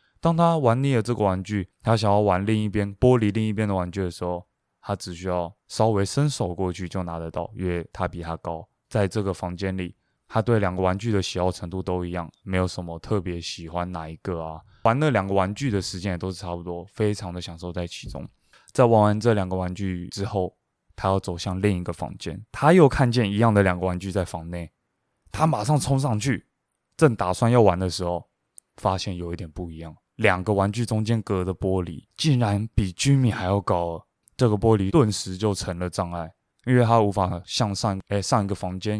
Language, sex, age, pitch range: Chinese, male, 20-39, 90-110 Hz